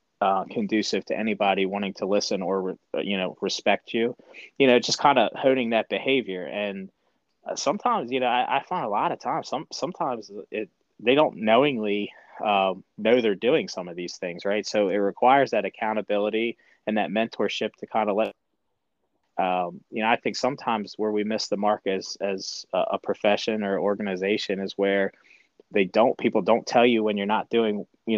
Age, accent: 20-39, American